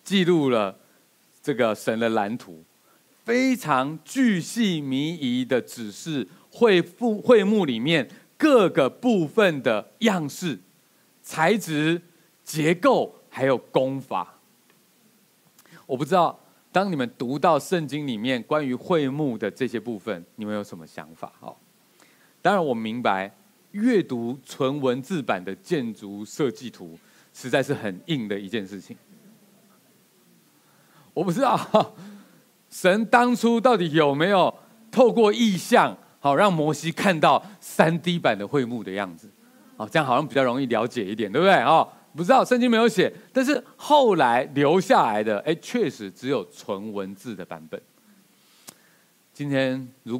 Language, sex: Chinese, male